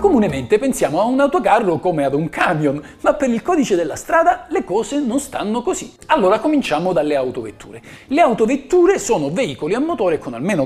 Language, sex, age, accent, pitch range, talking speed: Italian, male, 40-59, native, 205-320 Hz, 180 wpm